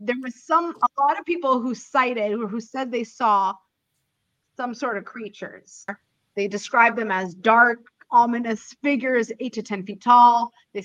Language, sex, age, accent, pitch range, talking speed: English, female, 30-49, American, 215-270 Hz, 170 wpm